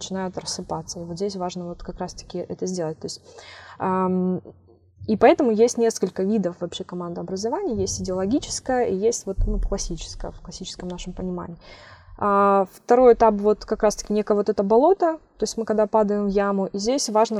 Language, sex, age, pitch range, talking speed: Russian, female, 20-39, 180-220 Hz, 175 wpm